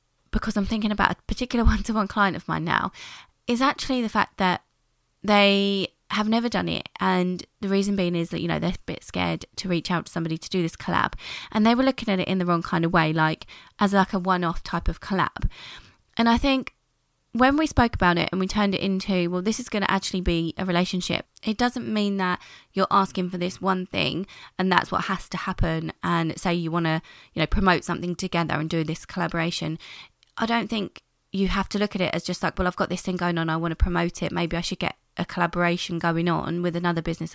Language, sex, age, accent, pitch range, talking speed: English, female, 20-39, British, 170-205 Hz, 240 wpm